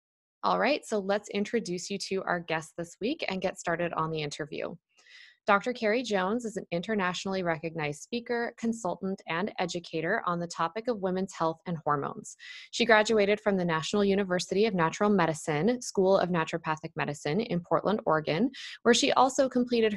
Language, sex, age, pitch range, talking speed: English, female, 20-39, 170-215 Hz, 170 wpm